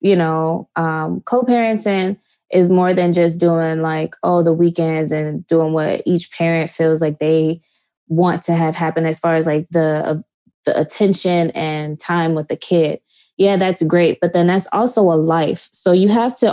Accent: American